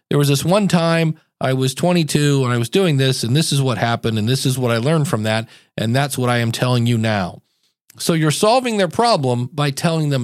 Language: English